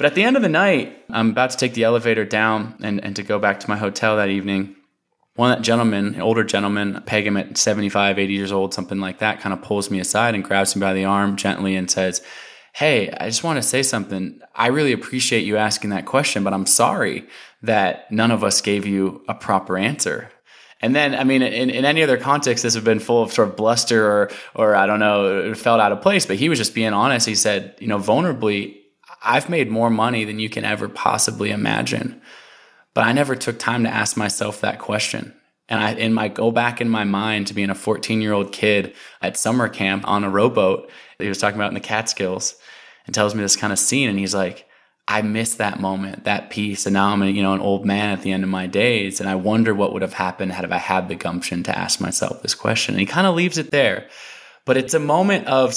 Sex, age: male, 20-39